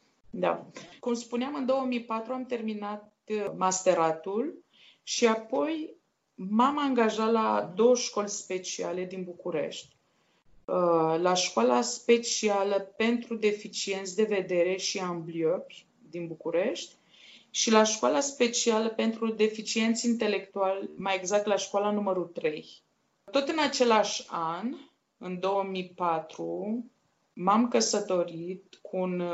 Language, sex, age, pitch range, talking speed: Romanian, female, 20-39, 180-220 Hz, 105 wpm